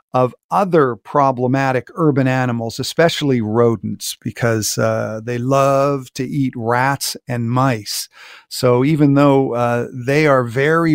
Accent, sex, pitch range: American, male, 125-155 Hz